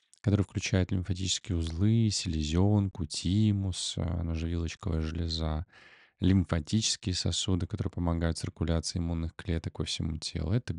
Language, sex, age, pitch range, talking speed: Russian, male, 20-39, 85-100 Hz, 105 wpm